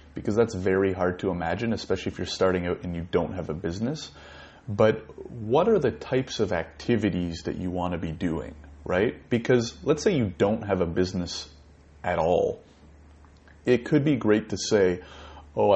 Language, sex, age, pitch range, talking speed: English, male, 30-49, 85-100 Hz, 185 wpm